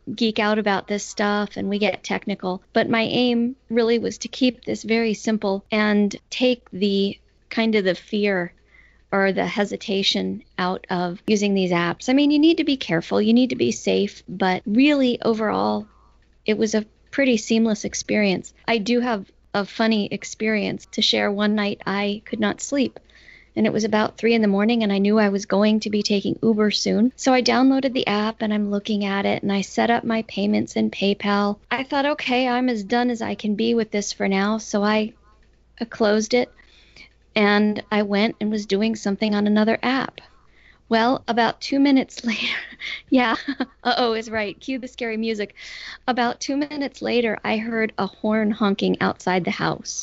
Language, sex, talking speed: English, female, 190 wpm